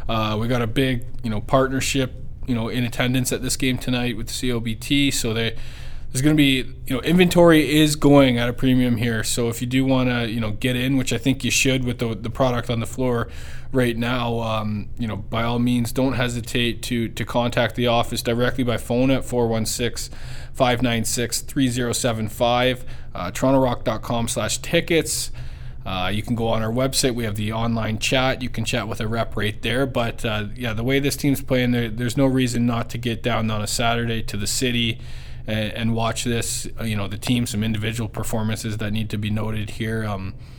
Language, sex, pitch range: English, male, 110-125 Hz